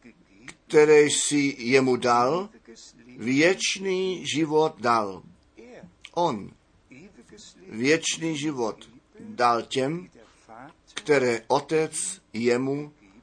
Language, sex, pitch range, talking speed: Czech, male, 125-155 Hz, 70 wpm